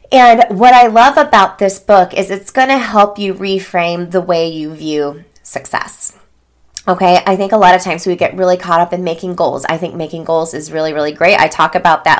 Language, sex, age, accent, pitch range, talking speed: English, female, 20-39, American, 165-205 Hz, 225 wpm